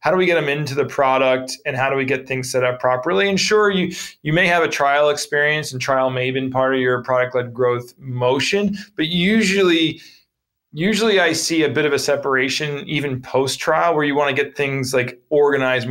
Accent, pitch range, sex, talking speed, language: American, 130-165 Hz, male, 220 wpm, English